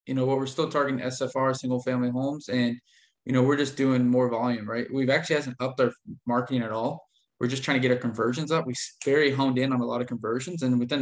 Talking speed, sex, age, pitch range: 250 wpm, male, 20-39, 120-135 Hz